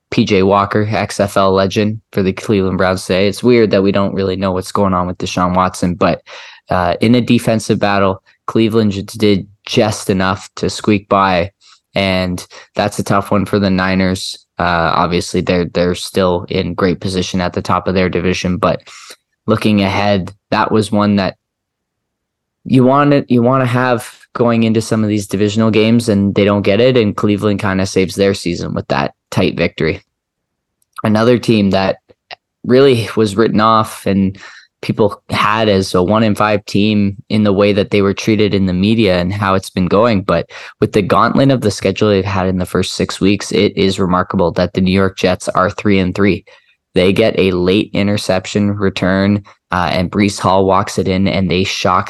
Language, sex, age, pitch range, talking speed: English, male, 20-39, 95-105 Hz, 190 wpm